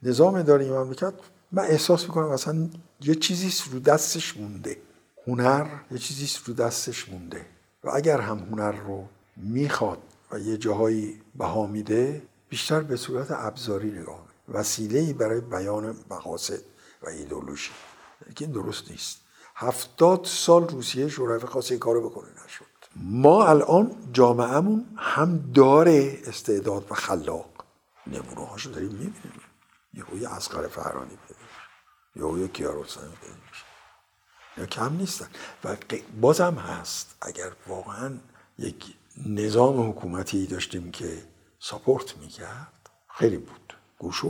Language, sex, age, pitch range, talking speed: Persian, male, 60-79, 110-165 Hz, 120 wpm